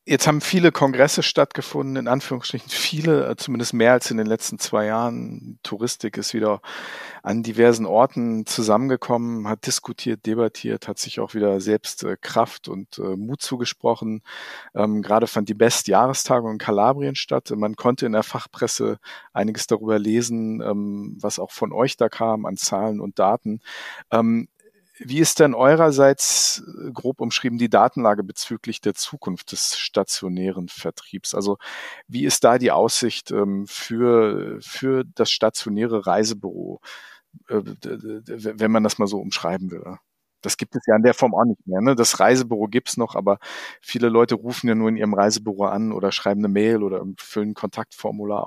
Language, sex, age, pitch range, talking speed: German, male, 50-69, 105-125 Hz, 160 wpm